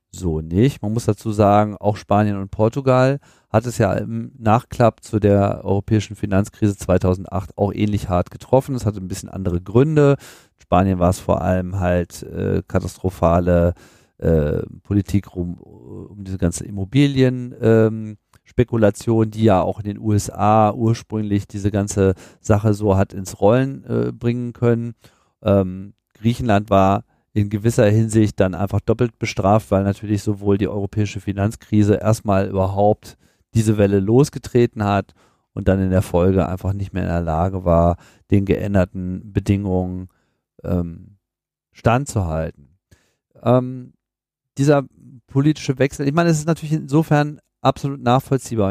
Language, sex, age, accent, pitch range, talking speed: German, male, 40-59, German, 95-120 Hz, 140 wpm